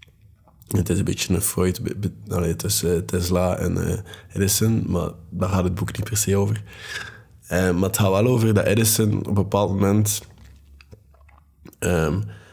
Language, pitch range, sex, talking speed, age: Dutch, 85-105 Hz, male, 170 wpm, 20-39